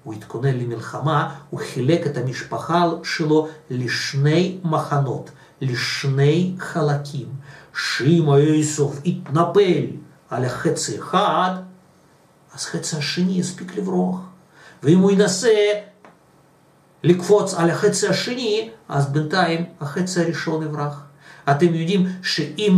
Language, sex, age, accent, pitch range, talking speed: Russian, male, 50-69, native, 140-185 Hz, 85 wpm